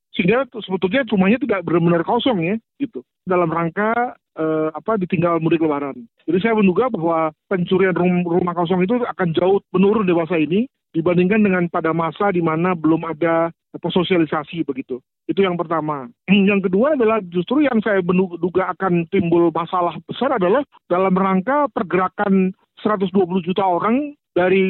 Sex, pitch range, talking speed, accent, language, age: male, 175-220 Hz, 150 wpm, native, Indonesian, 50-69